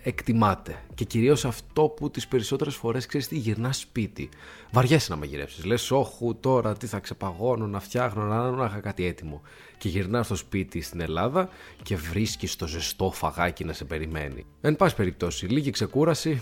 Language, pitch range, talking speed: Greek, 95-120 Hz, 185 wpm